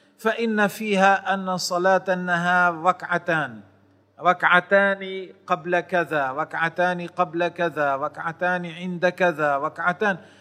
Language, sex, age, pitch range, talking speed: Arabic, male, 40-59, 165-185 Hz, 90 wpm